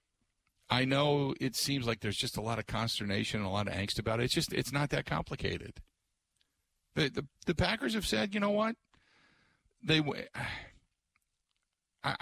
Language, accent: English, American